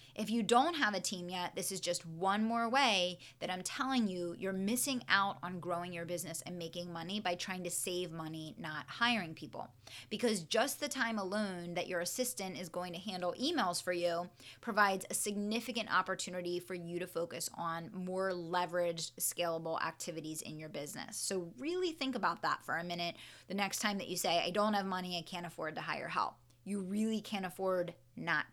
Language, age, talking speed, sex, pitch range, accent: English, 20-39, 200 wpm, female, 175-220 Hz, American